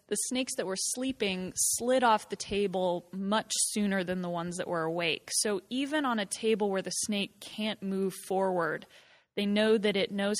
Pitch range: 180-215 Hz